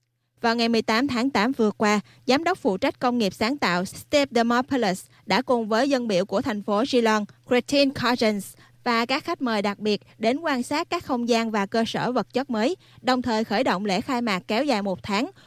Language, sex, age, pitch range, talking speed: Vietnamese, female, 20-39, 200-250 Hz, 220 wpm